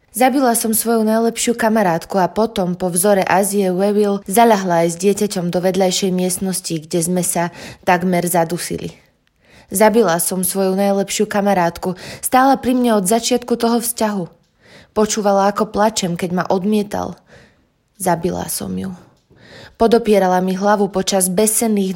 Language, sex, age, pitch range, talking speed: Slovak, female, 20-39, 180-215 Hz, 130 wpm